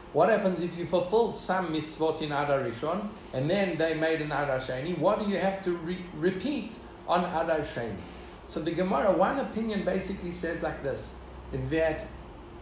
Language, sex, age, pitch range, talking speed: English, male, 50-69, 150-190 Hz, 165 wpm